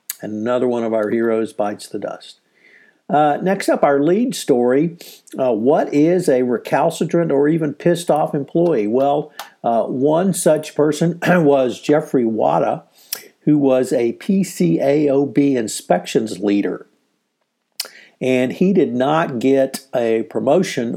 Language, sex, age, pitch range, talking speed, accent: English, male, 50-69, 125-155 Hz, 130 wpm, American